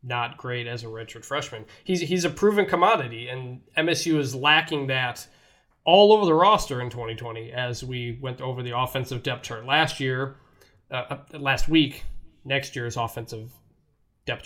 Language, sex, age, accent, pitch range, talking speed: English, male, 20-39, American, 125-150 Hz, 160 wpm